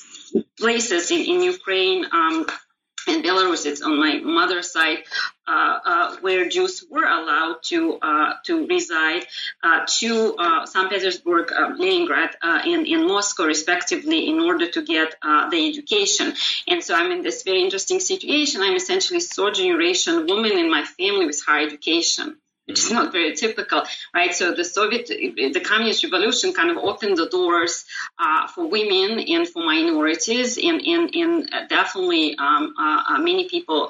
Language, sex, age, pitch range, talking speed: English, female, 30-49, 260-370 Hz, 165 wpm